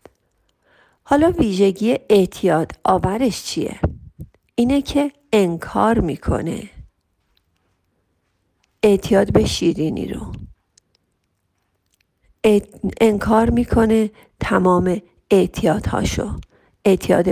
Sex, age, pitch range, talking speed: female, 40-59, 190-245 Hz, 65 wpm